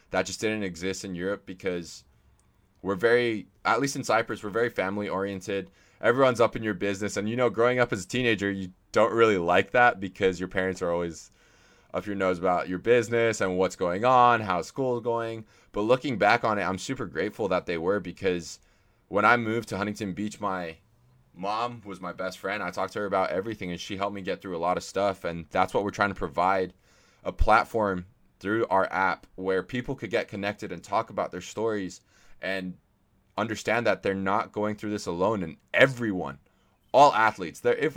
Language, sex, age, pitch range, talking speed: English, male, 20-39, 95-115 Hz, 205 wpm